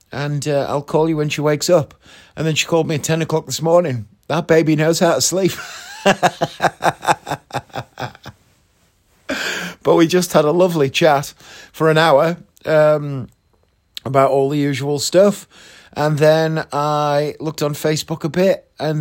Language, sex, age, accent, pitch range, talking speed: English, male, 30-49, British, 130-165 Hz, 160 wpm